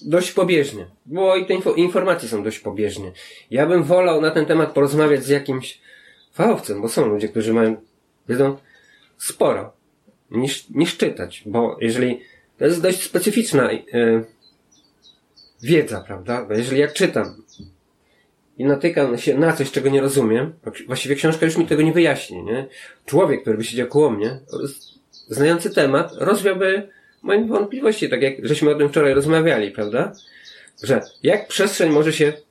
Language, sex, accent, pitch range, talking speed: Polish, male, native, 110-160 Hz, 150 wpm